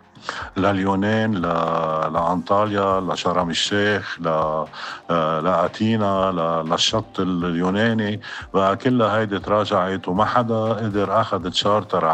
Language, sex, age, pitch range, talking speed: Arabic, male, 50-69, 85-105 Hz, 95 wpm